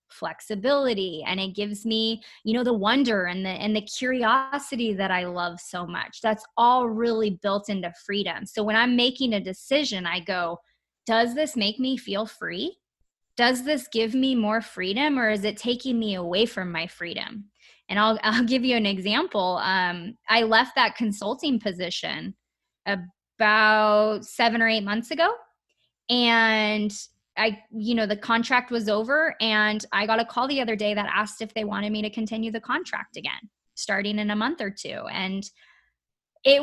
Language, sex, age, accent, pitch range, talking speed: English, female, 20-39, American, 200-240 Hz, 175 wpm